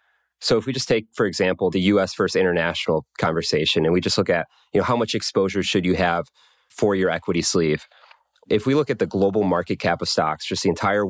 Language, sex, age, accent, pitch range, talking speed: English, male, 30-49, American, 90-105 Hz, 225 wpm